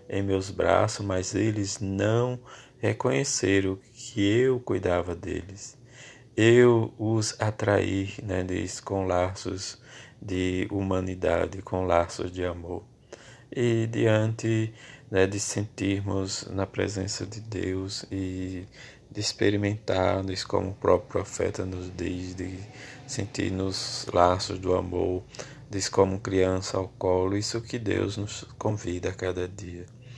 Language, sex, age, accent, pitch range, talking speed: Portuguese, male, 20-39, Brazilian, 95-110 Hz, 120 wpm